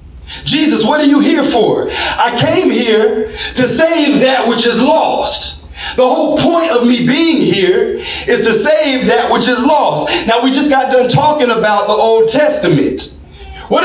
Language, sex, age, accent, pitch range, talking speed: English, male, 40-59, American, 220-300 Hz, 175 wpm